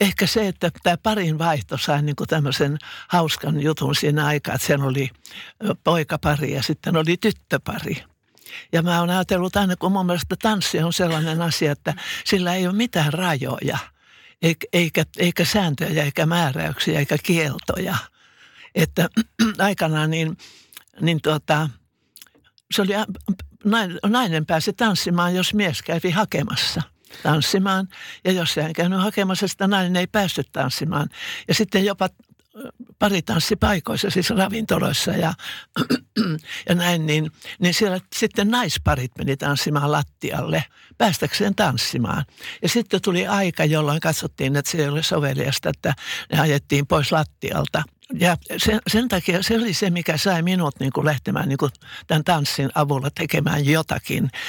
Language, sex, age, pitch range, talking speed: Finnish, male, 60-79, 150-190 Hz, 140 wpm